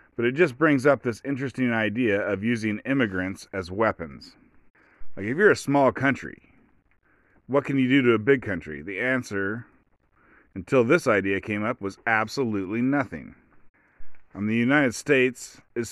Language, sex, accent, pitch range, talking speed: English, male, American, 100-130 Hz, 160 wpm